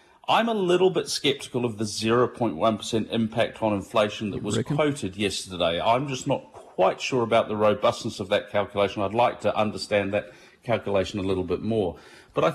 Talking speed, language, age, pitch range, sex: 180 wpm, English, 40-59, 105-145 Hz, male